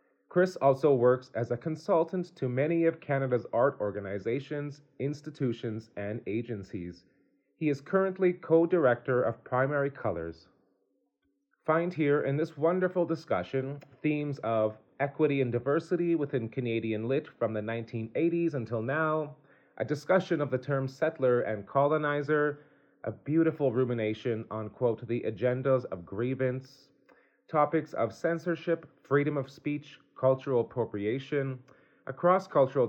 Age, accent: 30-49, American